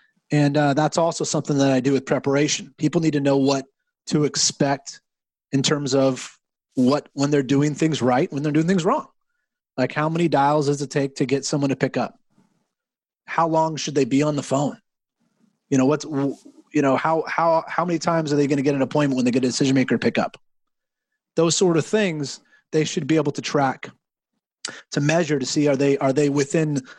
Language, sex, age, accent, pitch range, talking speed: English, male, 30-49, American, 140-170 Hz, 210 wpm